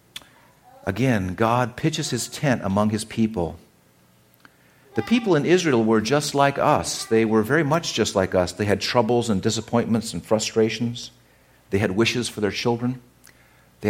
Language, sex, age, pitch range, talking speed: English, male, 50-69, 90-120 Hz, 160 wpm